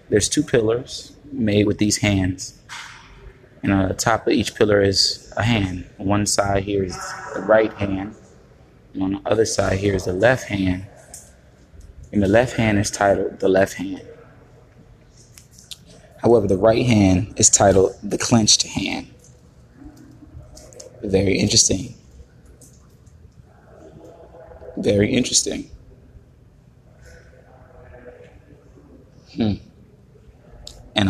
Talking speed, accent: 110 wpm, American